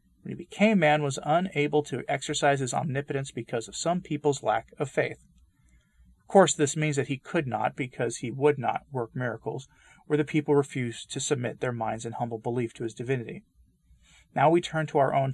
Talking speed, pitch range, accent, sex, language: 200 wpm, 120-150 Hz, American, male, English